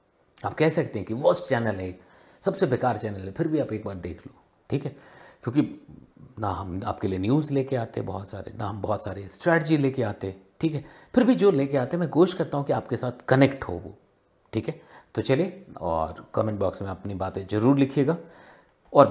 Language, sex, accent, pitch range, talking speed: Hindi, male, native, 100-145 Hz, 225 wpm